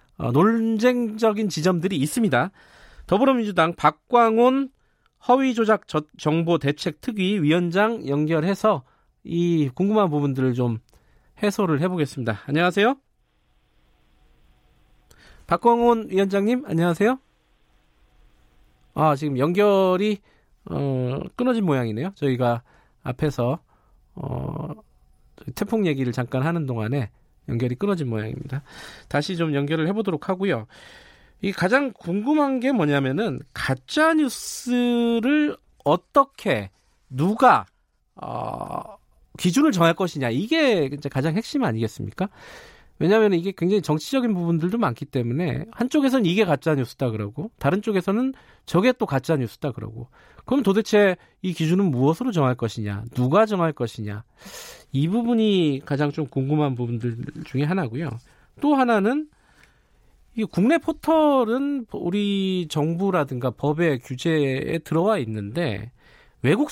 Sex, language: male, Korean